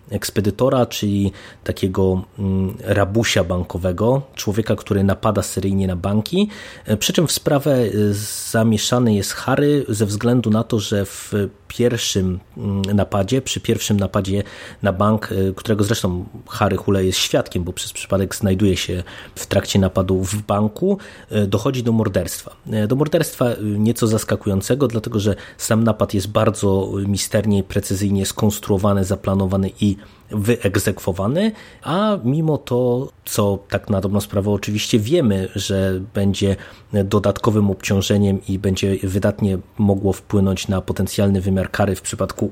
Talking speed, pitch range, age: 130 wpm, 95-115 Hz, 30-49